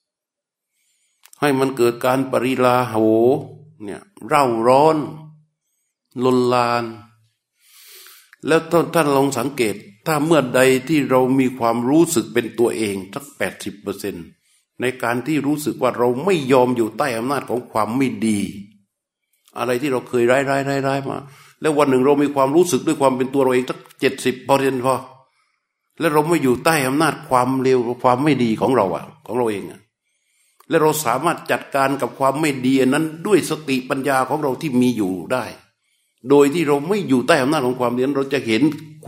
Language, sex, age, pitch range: Thai, male, 60-79, 125-150 Hz